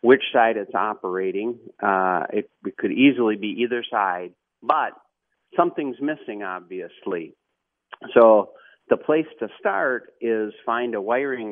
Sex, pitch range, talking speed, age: male, 100-125 Hz, 130 wpm, 40-59